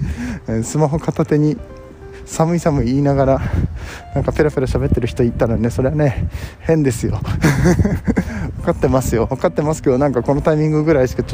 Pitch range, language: 125-200 Hz, Japanese